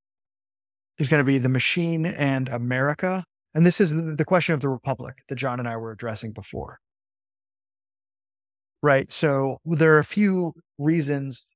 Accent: American